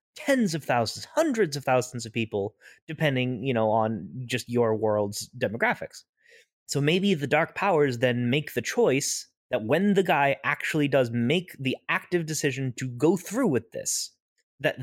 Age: 30-49